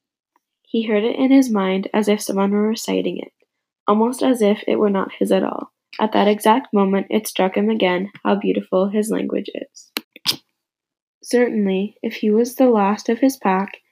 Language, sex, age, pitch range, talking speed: English, female, 10-29, 195-230 Hz, 185 wpm